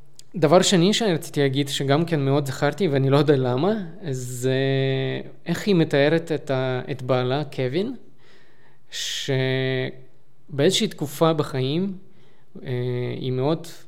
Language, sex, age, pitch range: Hebrew, male, 20-39, 130-155 Hz